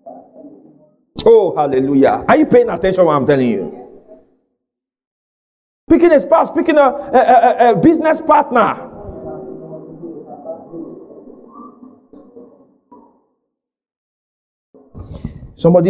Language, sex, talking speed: English, male, 85 wpm